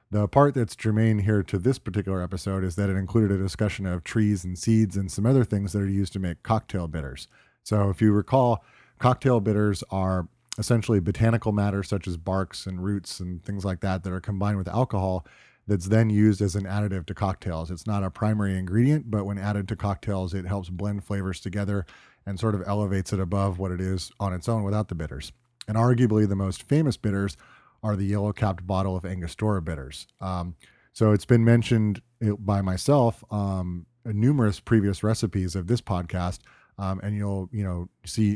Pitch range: 95-110 Hz